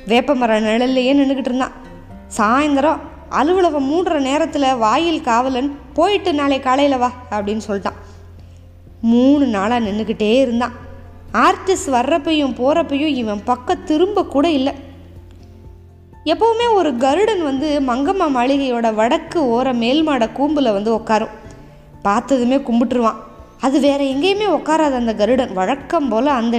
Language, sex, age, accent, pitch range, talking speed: Tamil, female, 20-39, native, 215-285 Hz, 115 wpm